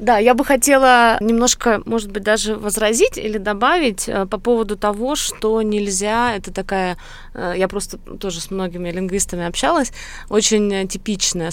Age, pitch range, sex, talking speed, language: 20-39, 175-215 Hz, female, 140 wpm, Russian